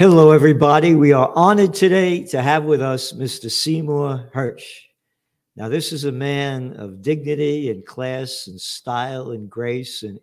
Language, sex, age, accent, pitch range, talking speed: English, male, 50-69, American, 115-145 Hz, 160 wpm